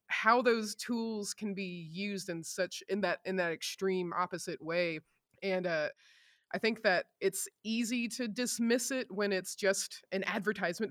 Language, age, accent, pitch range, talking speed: English, 20-39, American, 180-215 Hz, 165 wpm